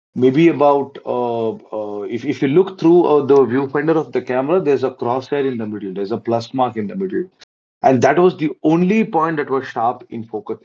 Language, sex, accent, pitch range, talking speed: Tamil, male, native, 115-155 Hz, 220 wpm